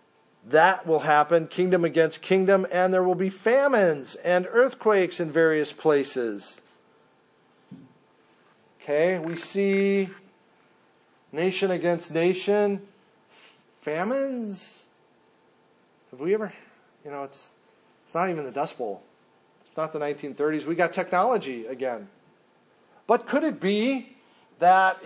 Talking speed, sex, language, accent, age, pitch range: 115 wpm, male, English, American, 40-59, 140-180 Hz